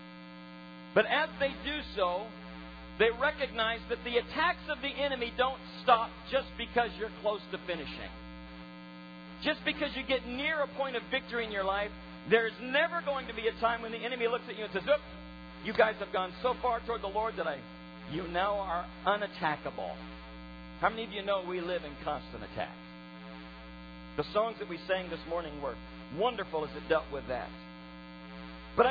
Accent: American